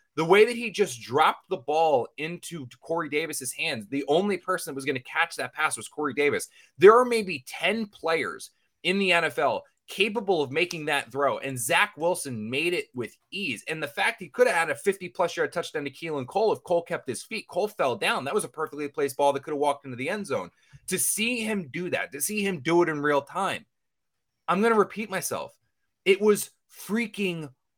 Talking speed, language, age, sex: 220 wpm, English, 20-39, male